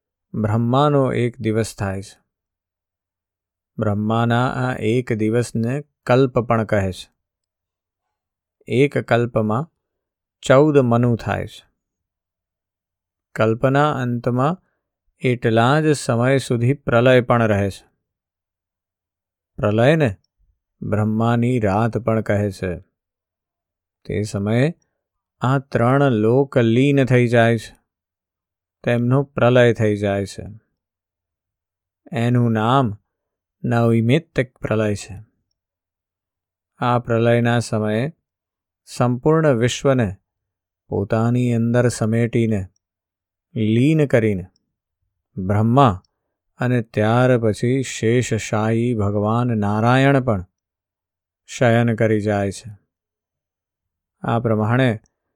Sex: male